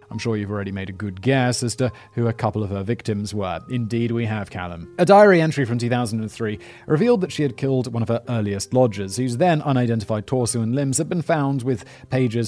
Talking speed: 225 wpm